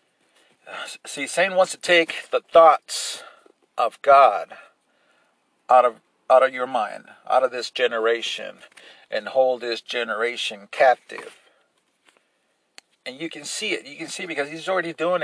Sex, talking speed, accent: male, 140 wpm, American